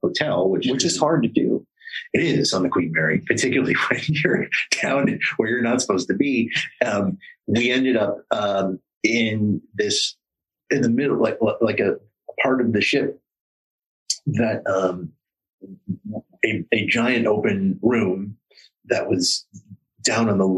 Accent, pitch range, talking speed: American, 95-120 Hz, 150 wpm